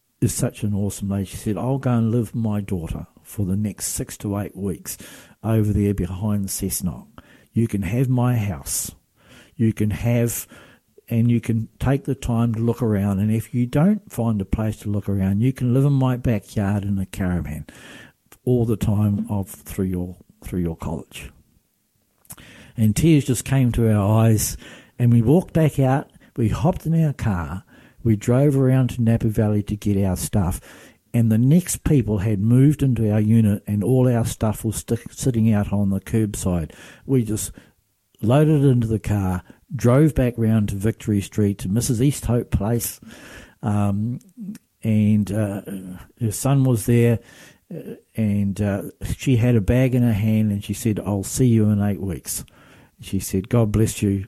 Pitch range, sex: 100-120 Hz, male